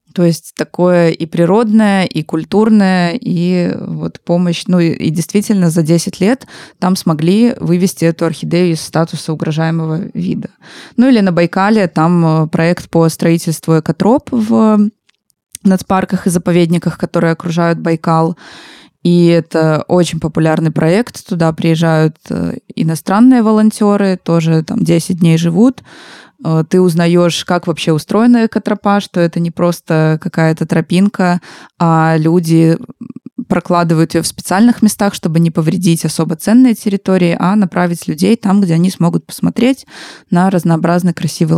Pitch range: 165-200 Hz